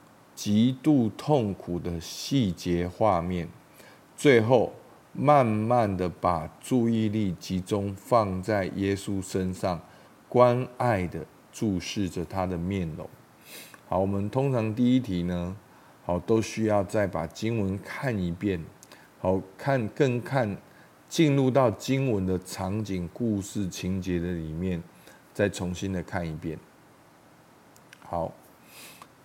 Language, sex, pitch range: Chinese, male, 90-120 Hz